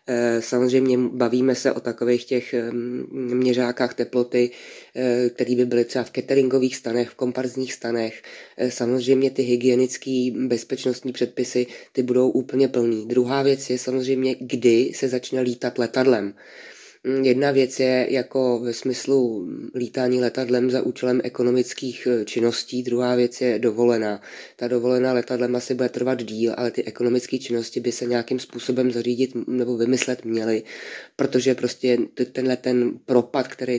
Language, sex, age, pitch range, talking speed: Czech, female, 20-39, 120-130 Hz, 135 wpm